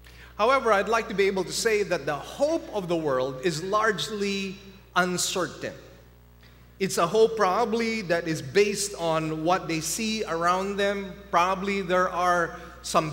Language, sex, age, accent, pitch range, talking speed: English, male, 30-49, Filipino, 165-210 Hz, 155 wpm